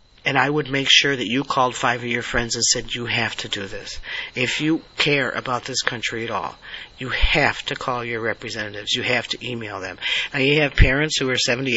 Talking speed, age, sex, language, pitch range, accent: 230 wpm, 40-59, male, English, 120-150 Hz, American